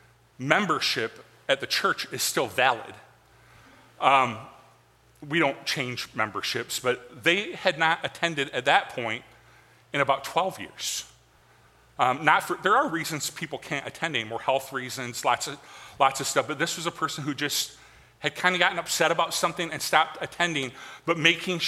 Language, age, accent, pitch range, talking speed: English, 40-59, American, 140-185 Hz, 165 wpm